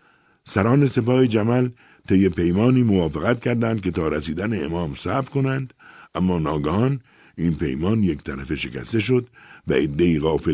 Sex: male